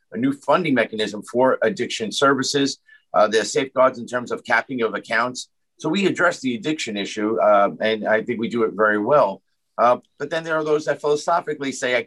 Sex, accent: male, American